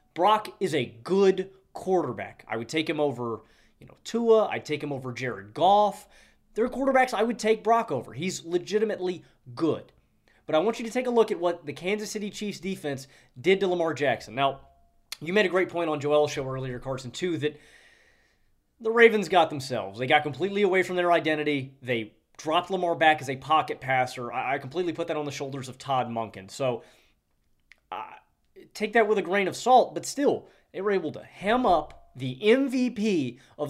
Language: English